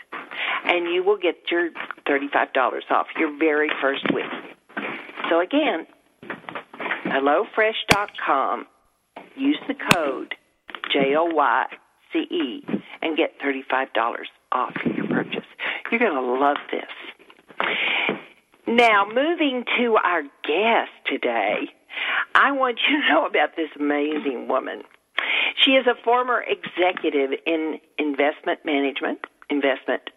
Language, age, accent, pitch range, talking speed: English, 50-69, American, 150-245 Hz, 105 wpm